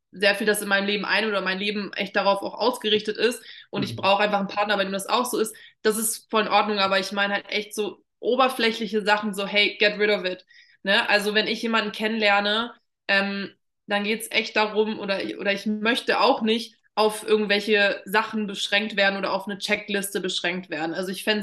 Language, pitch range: German, 195-225 Hz